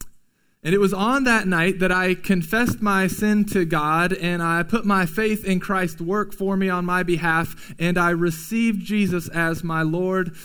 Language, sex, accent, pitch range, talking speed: English, male, American, 165-210 Hz, 190 wpm